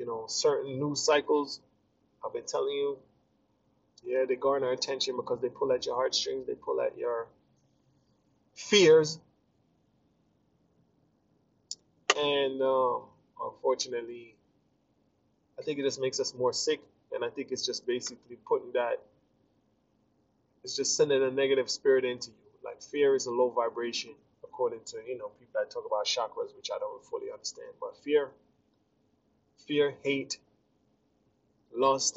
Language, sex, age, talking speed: English, male, 20-39, 140 wpm